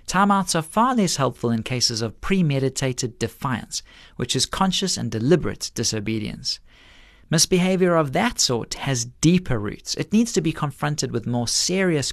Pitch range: 125-175 Hz